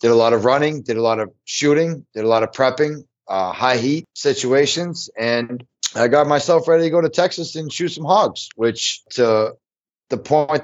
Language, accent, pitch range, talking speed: English, American, 120-165 Hz, 205 wpm